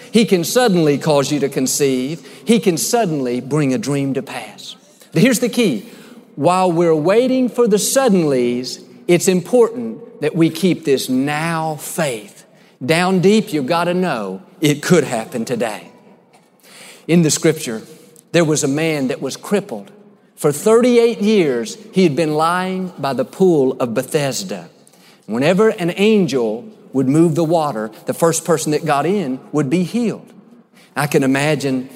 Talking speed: 155 wpm